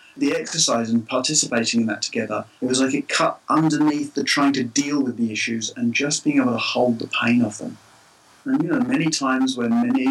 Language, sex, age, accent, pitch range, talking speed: English, male, 30-49, British, 115-150 Hz, 220 wpm